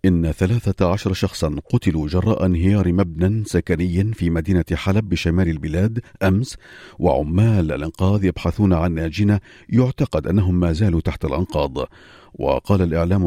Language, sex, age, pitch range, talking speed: Arabic, male, 50-69, 85-105 Hz, 125 wpm